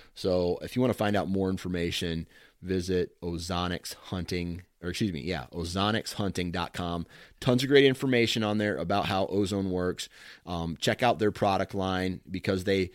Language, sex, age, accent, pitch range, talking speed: English, male, 30-49, American, 85-100 Hz, 160 wpm